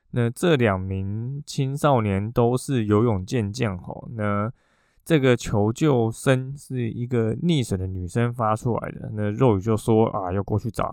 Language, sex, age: Chinese, male, 20-39